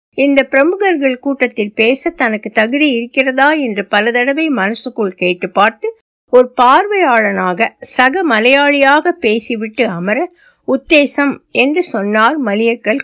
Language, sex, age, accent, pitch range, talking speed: Tamil, female, 60-79, native, 220-295 Hz, 105 wpm